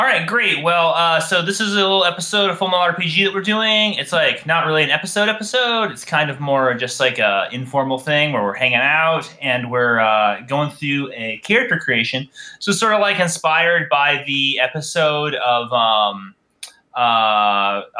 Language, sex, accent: English, male, American